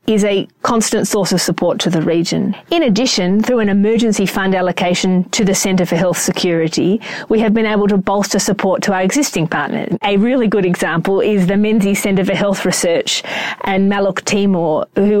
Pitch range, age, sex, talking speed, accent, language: 180-215 Hz, 30-49, female, 190 wpm, Australian, English